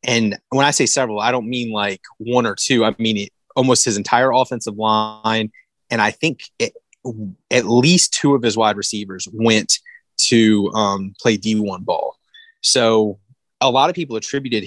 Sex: male